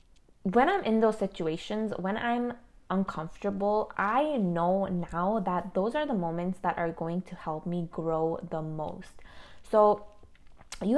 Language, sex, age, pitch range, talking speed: English, female, 20-39, 170-210 Hz, 150 wpm